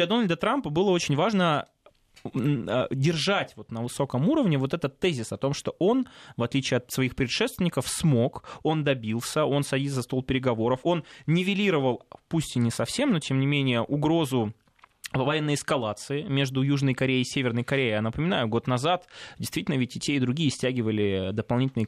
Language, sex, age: Russian, male, 20-39